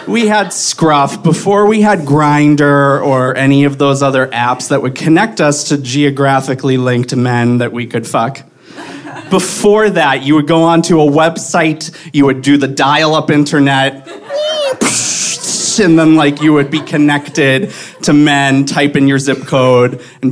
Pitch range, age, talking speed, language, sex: 130-165 Hz, 30-49, 160 wpm, English, male